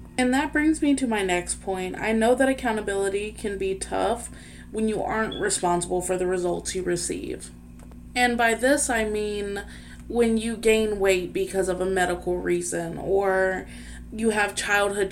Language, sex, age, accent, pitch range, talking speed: English, female, 20-39, American, 175-215 Hz, 165 wpm